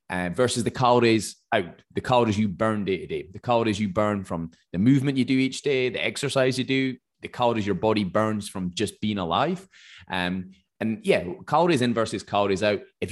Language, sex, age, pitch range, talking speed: English, male, 20-39, 95-125 Hz, 200 wpm